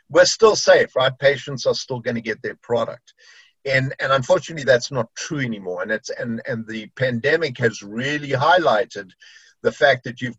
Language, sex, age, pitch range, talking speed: English, male, 50-69, 125-170 Hz, 180 wpm